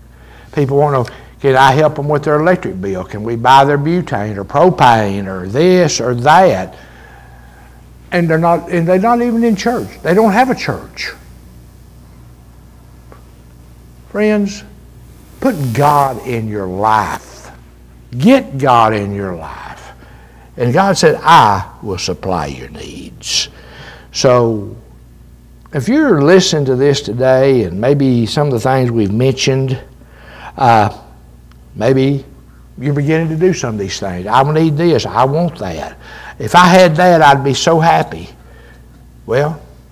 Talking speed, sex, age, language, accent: 145 wpm, male, 60-79, English, American